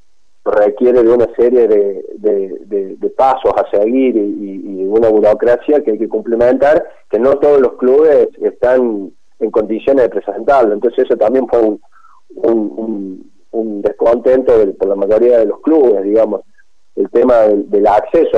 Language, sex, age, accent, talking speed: Spanish, male, 30-49, Argentinian, 165 wpm